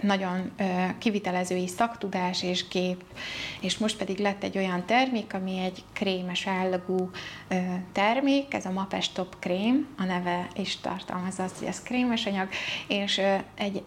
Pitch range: 180-205 Hz